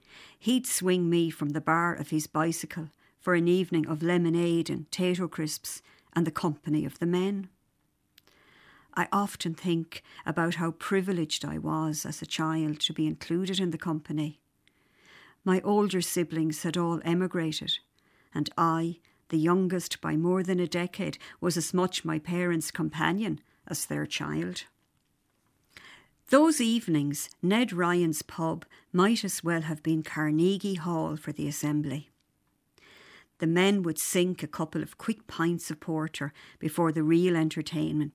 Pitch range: 155-180 Hz